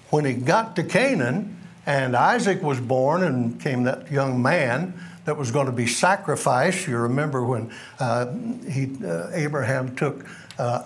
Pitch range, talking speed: 130-185 Hz, 155 wpm